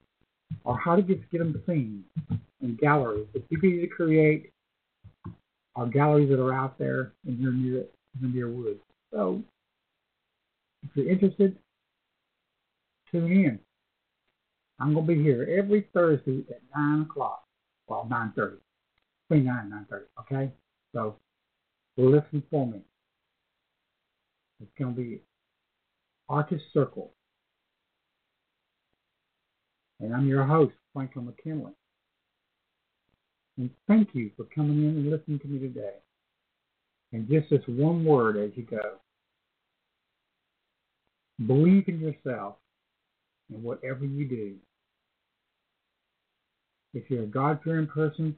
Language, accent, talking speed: English, American, 115 wpm